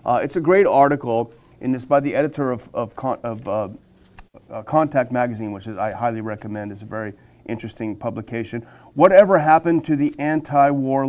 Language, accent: English, American